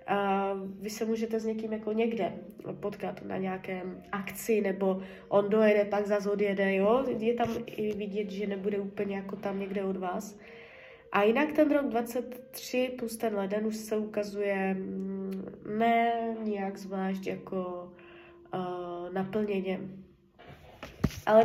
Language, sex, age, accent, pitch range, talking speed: Czech, female, 20-39, native, 195-230 Hz, 140 wpm